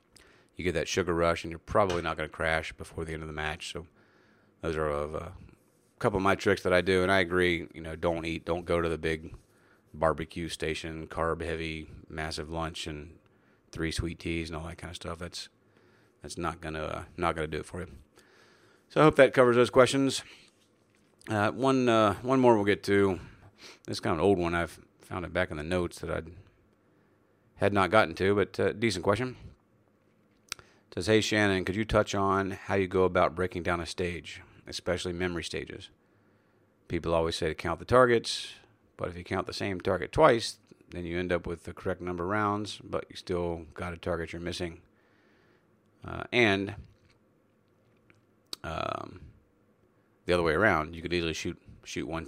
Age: 40-59